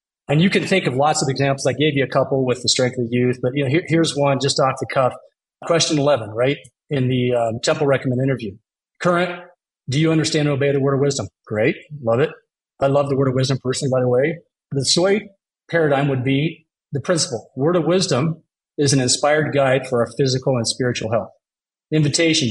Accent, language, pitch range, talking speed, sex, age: American, English, 125-155 Hz, 220 wpm, male, 40-59